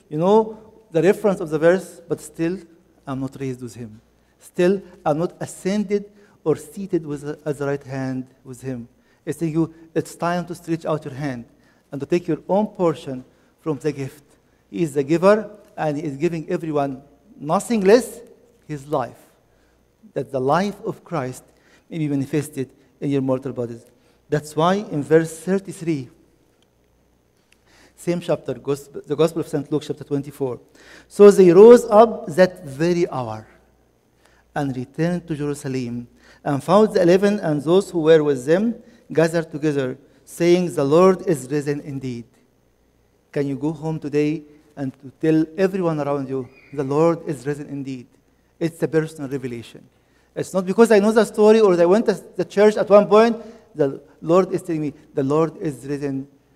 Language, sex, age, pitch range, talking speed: English, male, 50-69, 140-180 Hz, 165 wpm